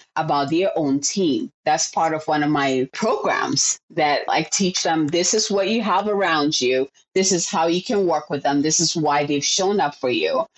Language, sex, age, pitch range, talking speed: English, female, 30-49, 150-215 Hz, 215 wpm